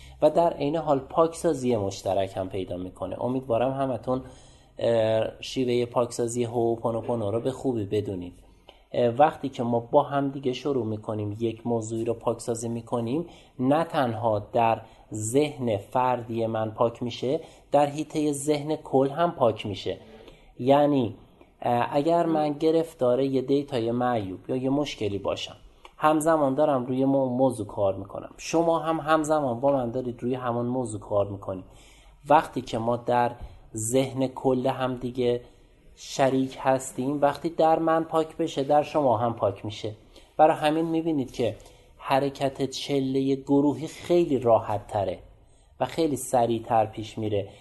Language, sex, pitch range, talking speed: Persian, male, 115-145 Hz, 135 wpm